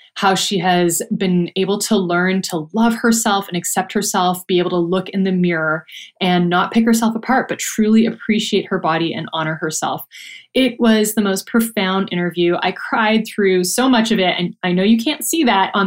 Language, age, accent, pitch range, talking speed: English, 20-39, American, 175-225 Hz, 205 wpm